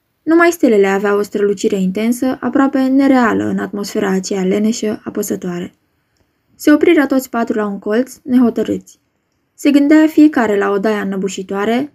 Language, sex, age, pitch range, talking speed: Romanian, female, 10-29, 200-270 Hz, 140 wpm